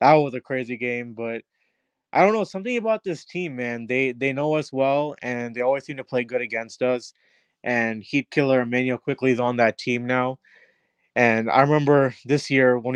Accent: American